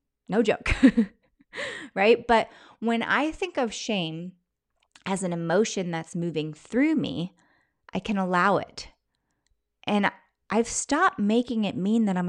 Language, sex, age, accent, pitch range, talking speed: English, female, 30-49, American, 175-230 Hz, 135 wpm